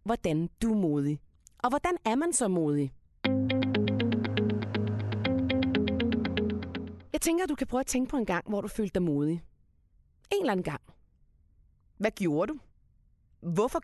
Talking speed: 145 wpm